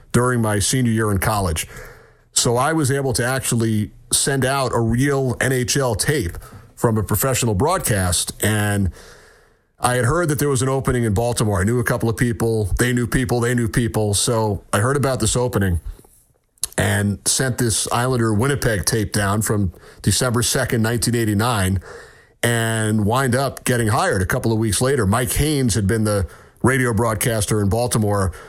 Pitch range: 105-125 Hz